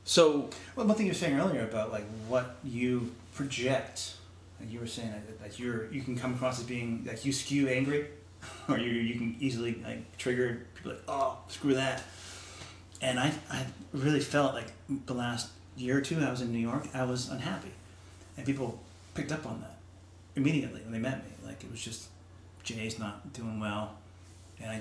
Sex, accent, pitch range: male, American, 95-130 Hz